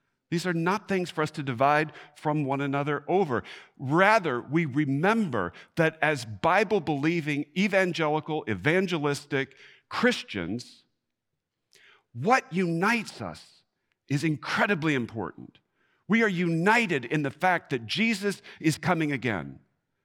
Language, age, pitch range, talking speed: English, 50-69, 140-190 Hz, 115 wpm